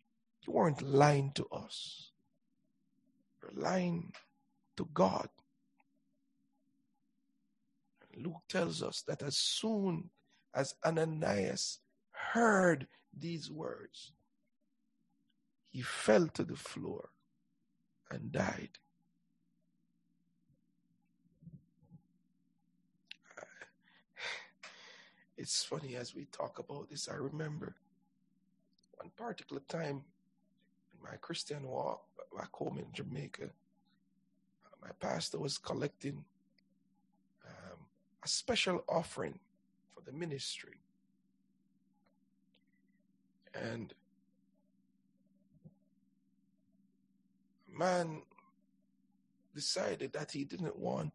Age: 60-79